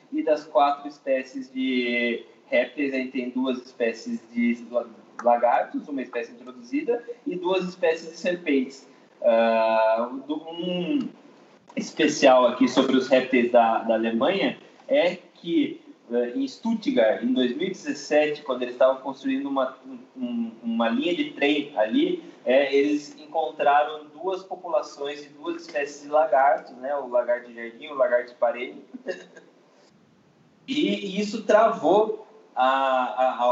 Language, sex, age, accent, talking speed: Portuguese, male, 20-39, Brazilian, 130 wpm